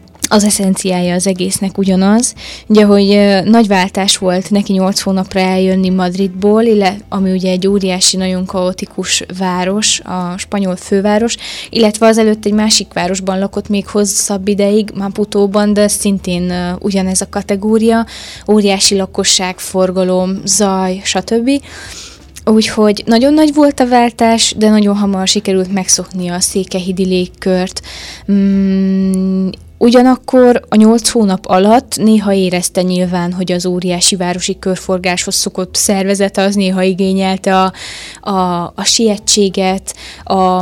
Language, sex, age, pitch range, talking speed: Hungarian, female, 20-39, 185-210 Hz, 120 wpm